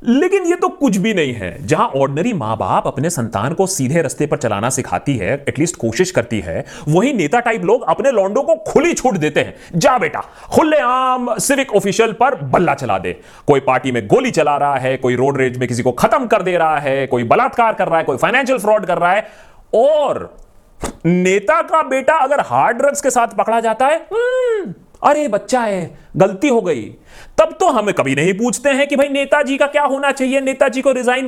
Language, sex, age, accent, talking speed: Hindi, male, 30-49, native, 205 wpm